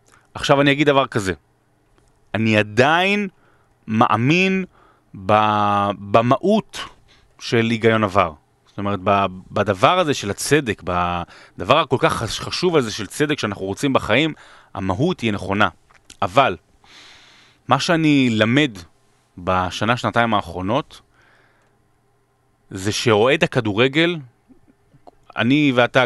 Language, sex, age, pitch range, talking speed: Hebrew, male, 30-49, 105-145 Hz, 95 wpm